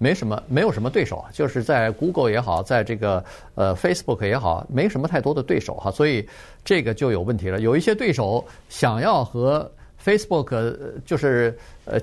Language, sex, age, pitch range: Chinese, male, 50-69, 105-155 Hz